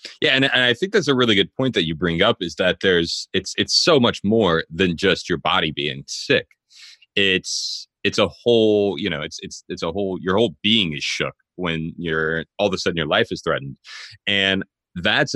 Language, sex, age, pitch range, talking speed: English, male, 30-49, 80-100 Hz, 220 wpm